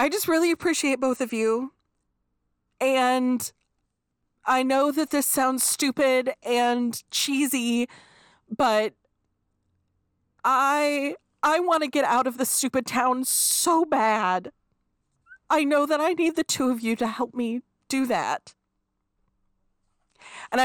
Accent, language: American, English